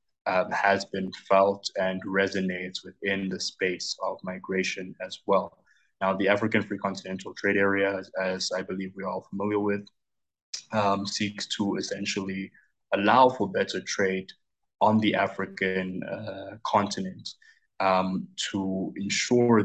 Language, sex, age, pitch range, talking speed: English, male, 20-39, 95-105 Hz, 135 wpm